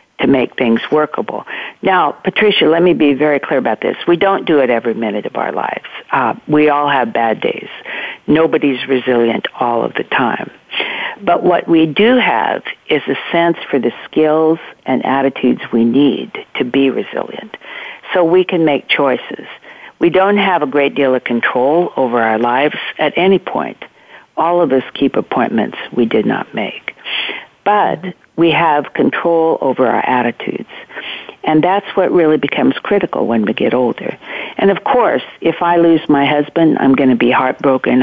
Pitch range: 130-170 Hz